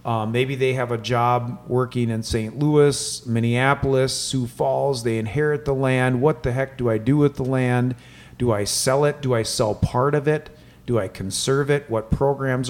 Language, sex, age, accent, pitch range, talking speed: English, male, 40-59, American, 120-140 Hz, 200 wpm